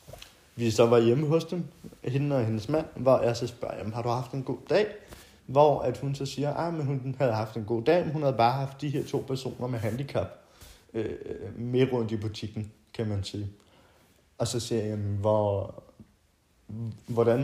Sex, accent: male, native